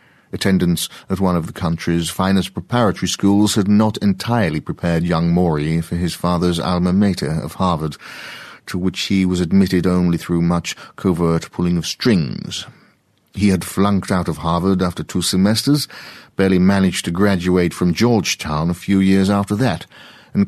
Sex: male